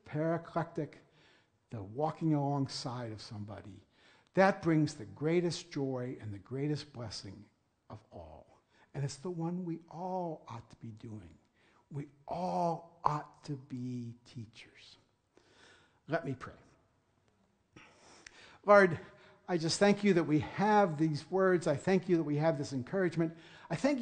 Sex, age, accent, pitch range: male, 60-79, American, 140-195 Hz